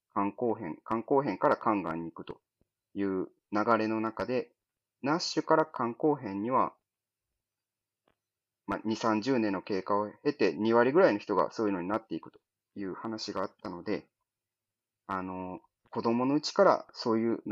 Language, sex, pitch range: Japanese, male, 105-125 Hz